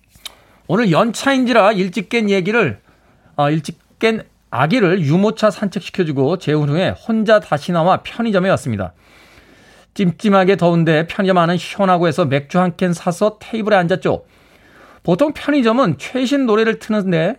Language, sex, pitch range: Korean, male, 160-220 Hz